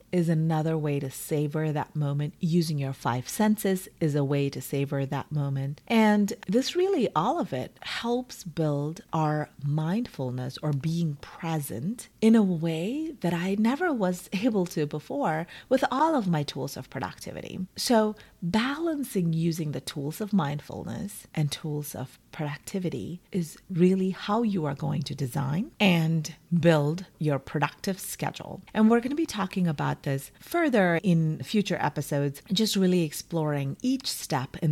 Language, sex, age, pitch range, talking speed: English, female, 30-49, 150-195 Hz, 155 wpm